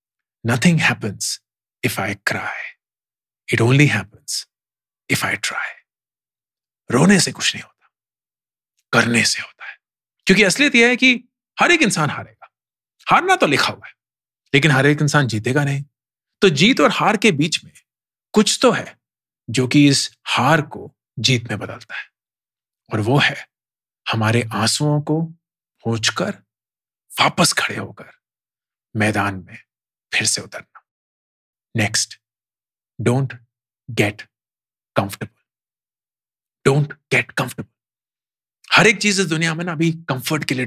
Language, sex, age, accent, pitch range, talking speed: English, male, 40-59, Indian, 120-180 Hz, 100 wpm